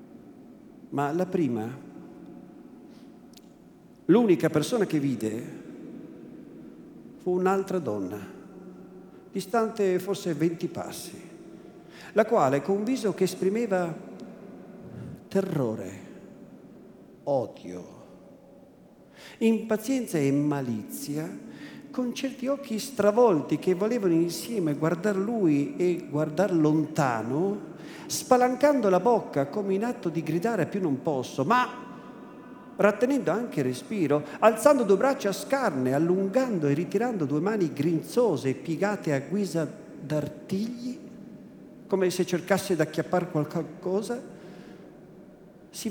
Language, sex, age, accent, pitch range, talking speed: Italian, male, 50-69, native, 155-240 Hz, 100 wpm